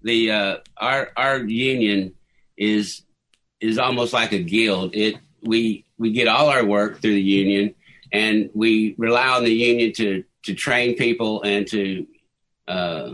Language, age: English, 50-69